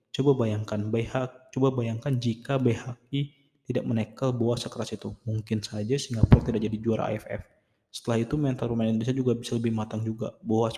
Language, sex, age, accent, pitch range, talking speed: Indonesian, male, 20-39, native, 110-125 Hz, 165 wpm